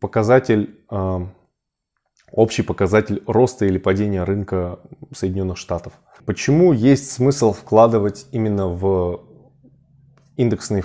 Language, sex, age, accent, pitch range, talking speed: Russian, male, 20-39, native, 100-130 Hz, 90 wpm